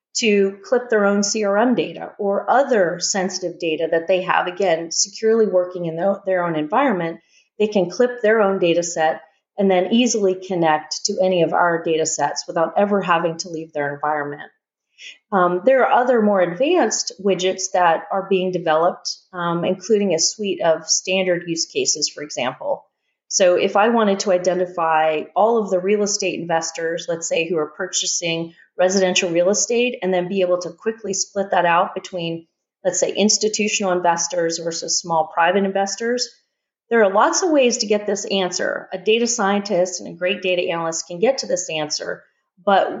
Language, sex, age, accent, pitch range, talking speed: English, female, 30-49, American, 170-210 Hz, 175 wpm